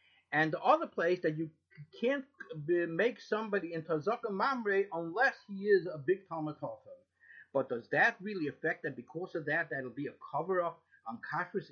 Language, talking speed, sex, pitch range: English, 170 wpm, male, 145-210 Hz